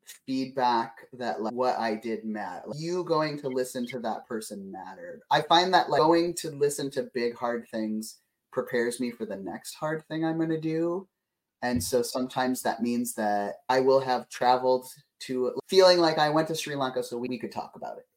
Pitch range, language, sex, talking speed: 120-165 Hz, English, male, 210 wpm